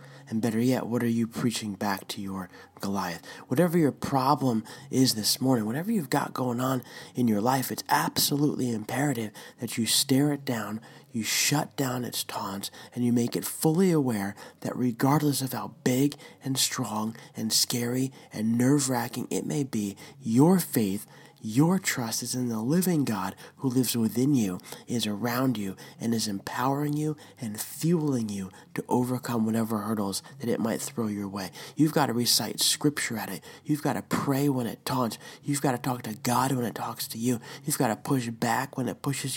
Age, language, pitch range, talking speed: 20-39, English, 115-140 Hz, 190 wpm